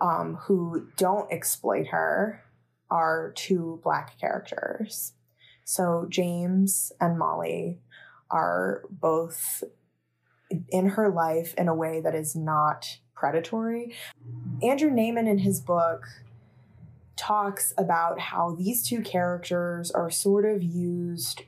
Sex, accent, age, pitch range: female, American, 20-39, 155-195 Hz